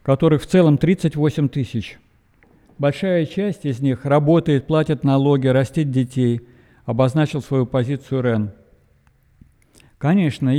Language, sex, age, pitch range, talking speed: Russian, male, 50-69, 130-155 Hz, 110 wpm